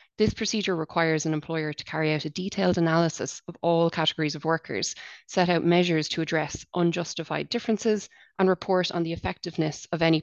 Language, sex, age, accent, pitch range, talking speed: English, female, 20-39, Irish, 160-180 Hz, 175 wpm